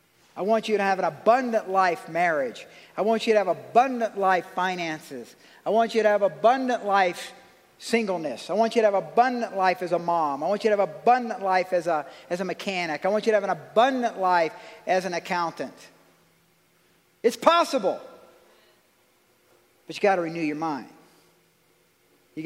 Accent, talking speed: American, 175 wpm